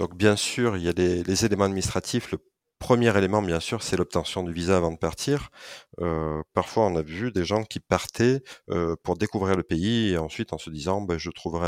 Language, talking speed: French, 225 wpm